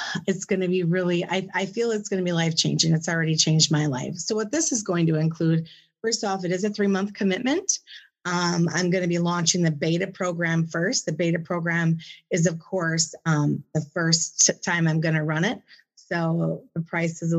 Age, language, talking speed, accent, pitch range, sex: 30-49, English, 205 wpm, American, 170-200 Hz, female